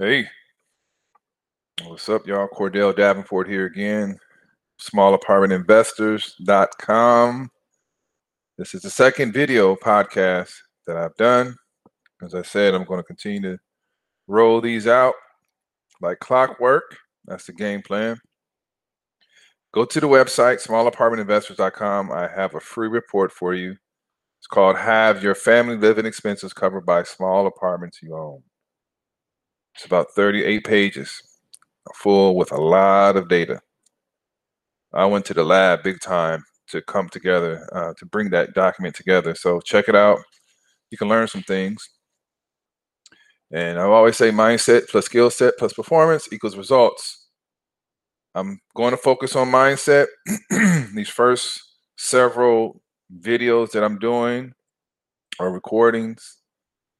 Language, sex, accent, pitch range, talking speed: English, male, American, 95-120 Hz, 130 wpm